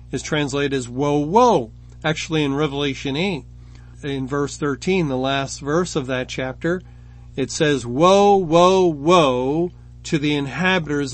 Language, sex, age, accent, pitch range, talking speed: English, male, 40-59, American, 125-170 Hz, 140 wpm